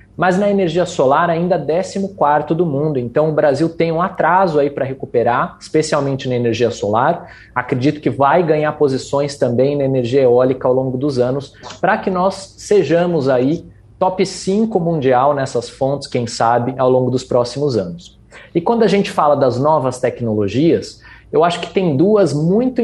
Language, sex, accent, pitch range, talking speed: Portuguese, male, Brazilian, 135-175 Hz, 175 wpm